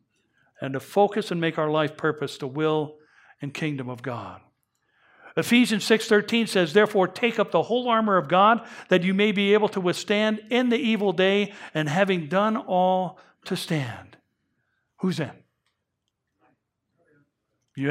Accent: American